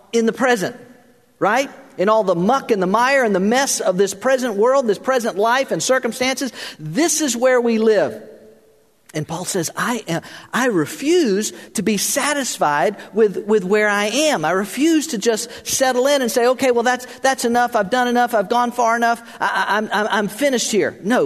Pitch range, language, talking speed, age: 155-255 Hz, English, 200 wpm, 50-69